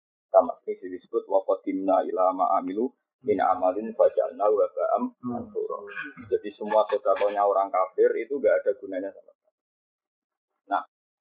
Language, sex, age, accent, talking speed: Indonesian, male, 30-49, native, 130 wpm